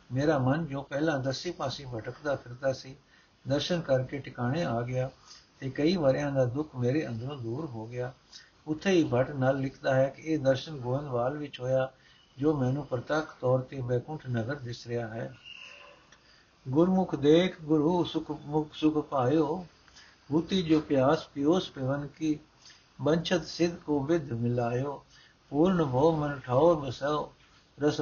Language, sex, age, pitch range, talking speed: Punjabi, male, 60-79, 130-155 Hz, 135 wpm